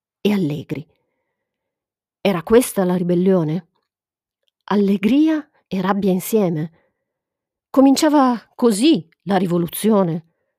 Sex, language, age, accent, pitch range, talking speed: female, Italian, 40-59, native, 160-220 Hz, 75 wpm